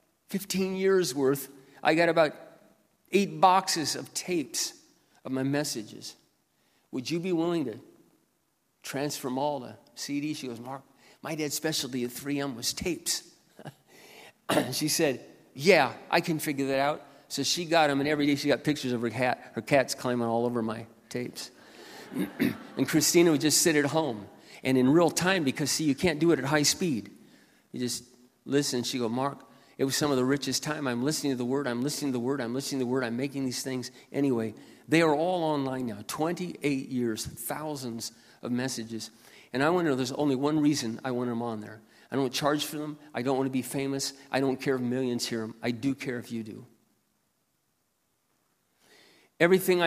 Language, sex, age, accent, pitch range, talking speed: English, male, 40-59, American, 125-150 Hz, 195 wpm